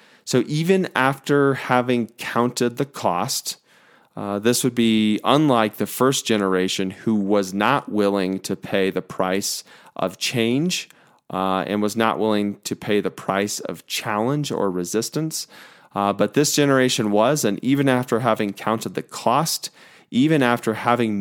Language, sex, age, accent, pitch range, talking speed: English, male, 30-49, American, 100-130 Hz, 150 wpm